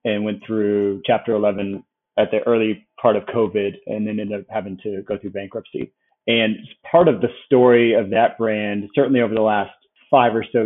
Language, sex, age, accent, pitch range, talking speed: English, male, 30-49, American, 100-120 Hz, 195 wpm